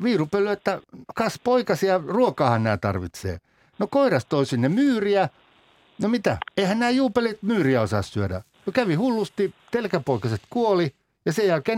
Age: 60-79